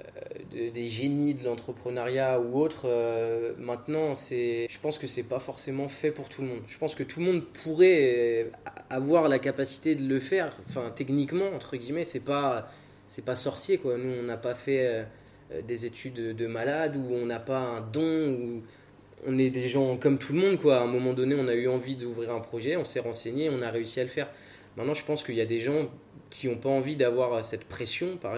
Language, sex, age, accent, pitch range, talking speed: French, male, 20-39, French, 115-140 Hz, 225 wpm